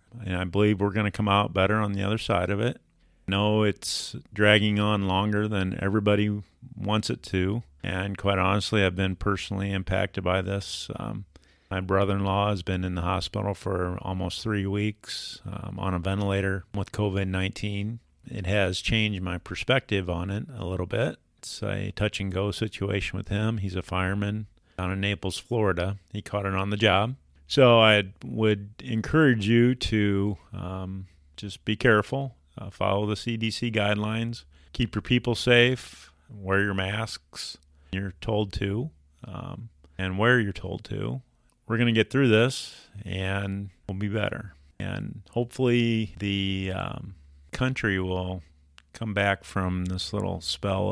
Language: English